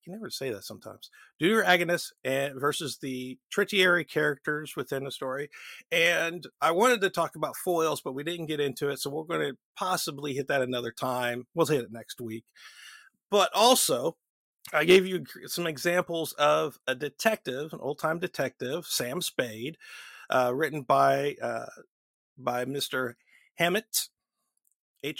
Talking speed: 155 wpm